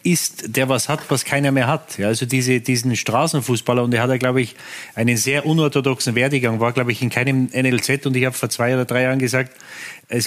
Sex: male